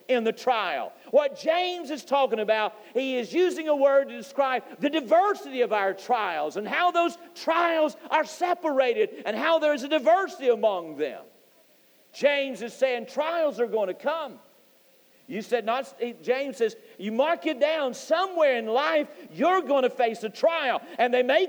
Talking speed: 175 wpm